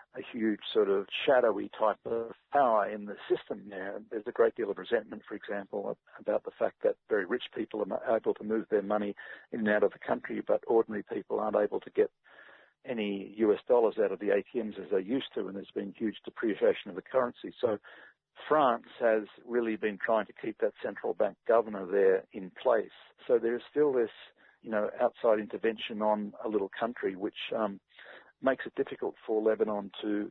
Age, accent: 50-69, Australian